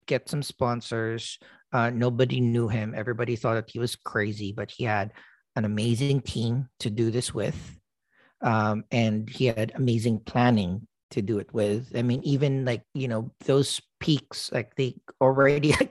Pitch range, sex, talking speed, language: 115-140 Hz, male, 165 wpm, English